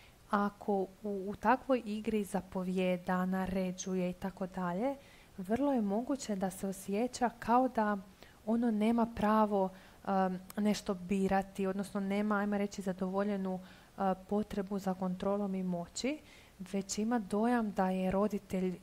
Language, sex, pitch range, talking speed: Croatian, female, 190-215 Hz, 125 wpm